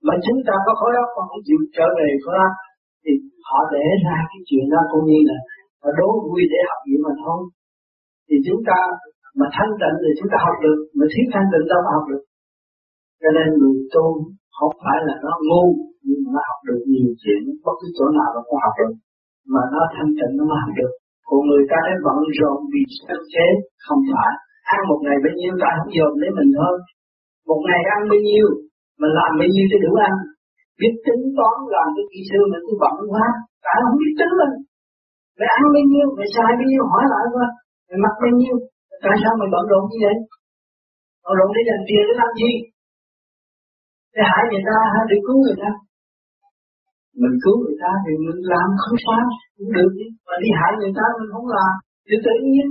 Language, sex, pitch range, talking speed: Vietnamese, male, 175-255 Hz, 215 wpm